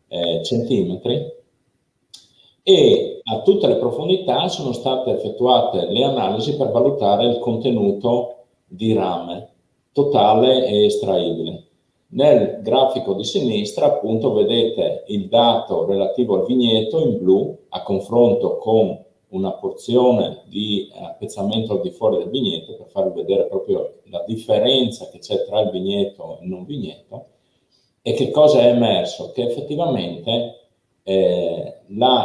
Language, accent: Italian, native